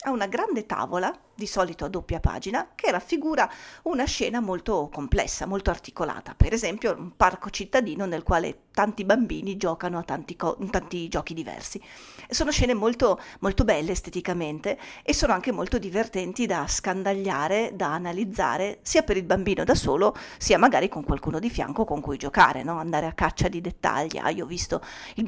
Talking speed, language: 175 wpm, Italian